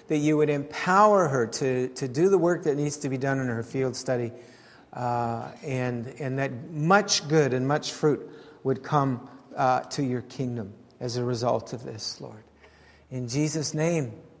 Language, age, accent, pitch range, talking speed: English, 50-69, American, 135-200 Hz, 180 wpm